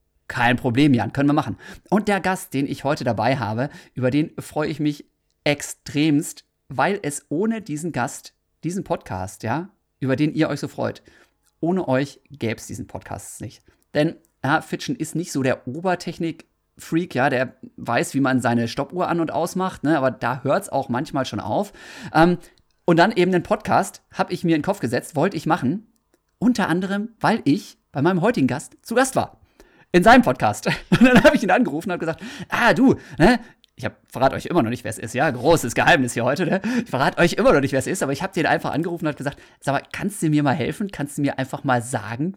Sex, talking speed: male, 220 wpm